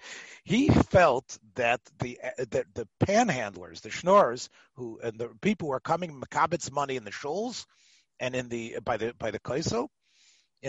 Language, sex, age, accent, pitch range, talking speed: English, male, 40-59, American, 125-180 Hz, 175 wpm